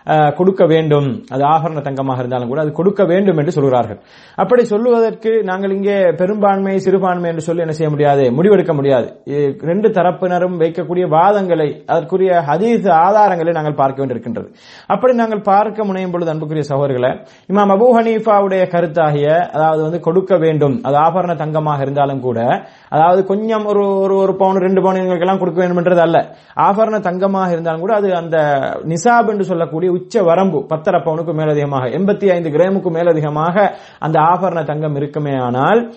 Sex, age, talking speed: male, 30-49, 105 wpm